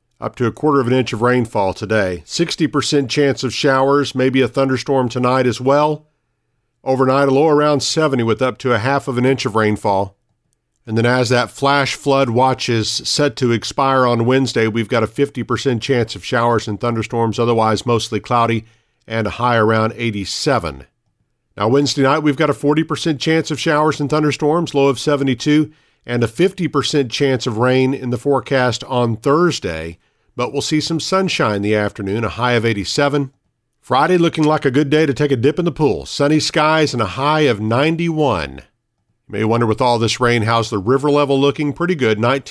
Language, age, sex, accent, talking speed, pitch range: English, 50-69, male, American, 195 wpm, 115-140 Hz